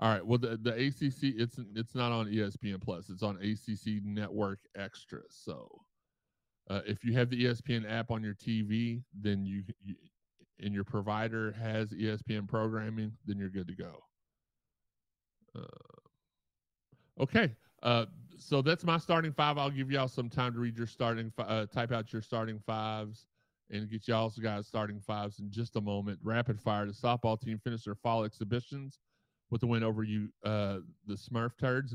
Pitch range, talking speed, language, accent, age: 105-120 Hz, 180 wpm, English, American, 30-49